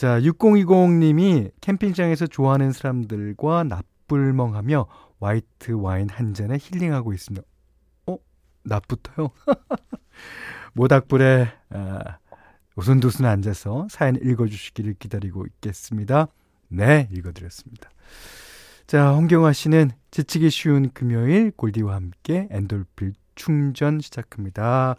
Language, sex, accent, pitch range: Korean, male, native, 100-155 Hz